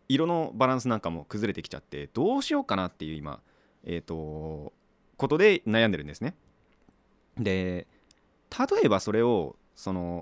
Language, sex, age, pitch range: Japanese, male, 30-49, 85-130 Hz